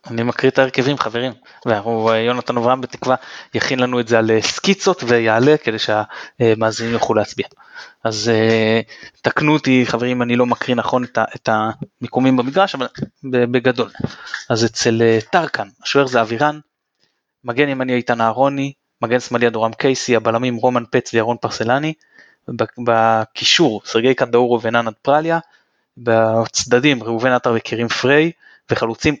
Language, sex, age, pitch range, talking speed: Hebrew, male, 20-39, 115-140 Hz, 125 wpm